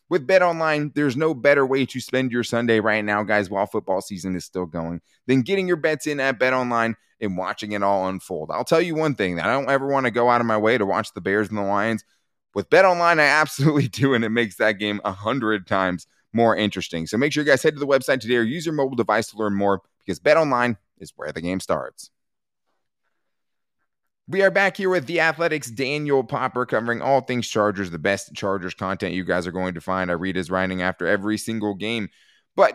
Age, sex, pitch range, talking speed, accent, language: 20-39, male, 105-145 Hz, 235 wpm, American, English